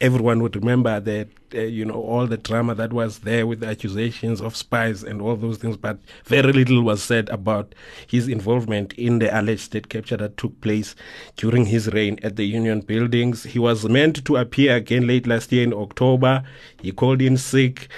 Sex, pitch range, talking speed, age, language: male, 110-130 Hz, 200 wpm, 30-49, English